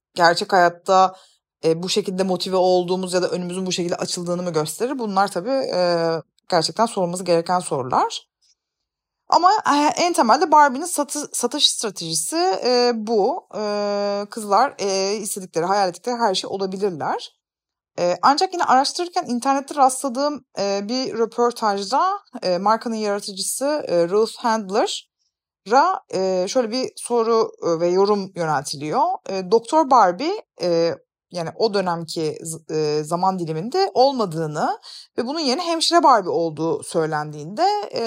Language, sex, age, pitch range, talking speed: Turkish, female, 30-49, 185-275 Hz, 120 wpm